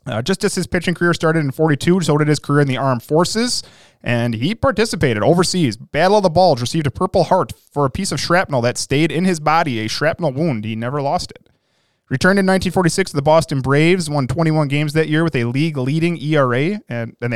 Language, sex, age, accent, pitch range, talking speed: English, male, 30-49, American, 130-170 Hz, 220 wpm